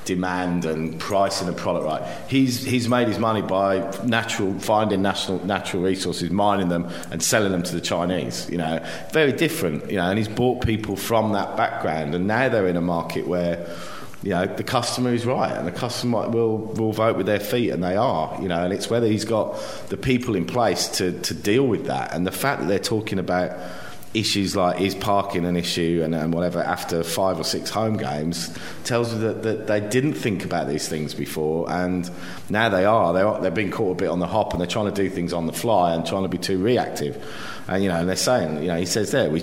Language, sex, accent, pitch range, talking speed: English, male, British, 90-110 Hz, 235 wpm